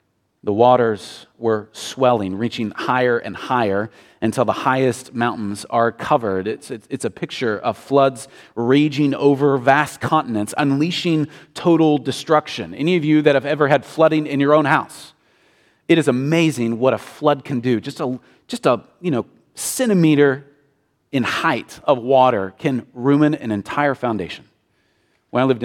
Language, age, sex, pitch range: English, 30-49, male, 115-140 Hz